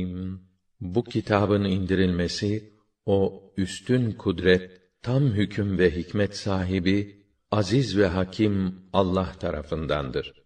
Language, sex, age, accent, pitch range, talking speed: Turkish, male, 50-69, native, 95-105 Hz, 90 wpm